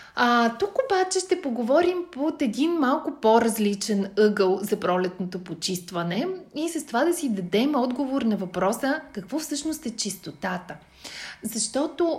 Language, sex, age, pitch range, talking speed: Bulgarian, female, 30-49, 205-275 Hz, 135 wpm